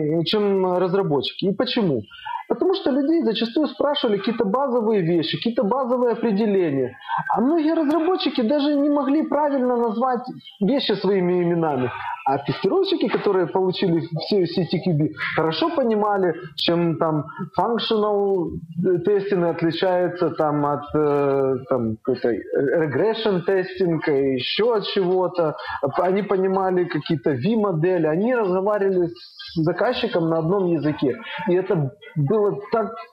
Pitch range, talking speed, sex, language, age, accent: 170-255 Hz, 115 wpm, male, Ukrainian, 20-39, native